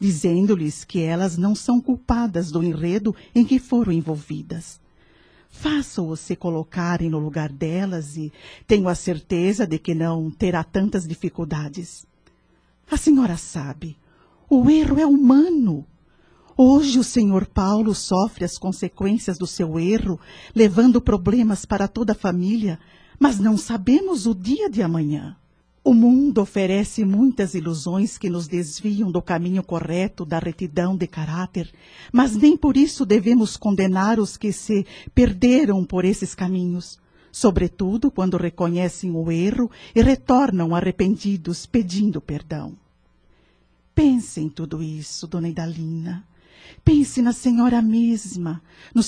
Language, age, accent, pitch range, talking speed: Portuguese, 50-69, Brazilian, 170-235 Hz, 130 wpm